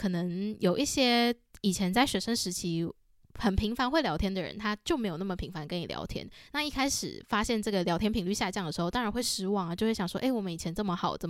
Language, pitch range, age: Chinese, 180-225 Hz, 20-39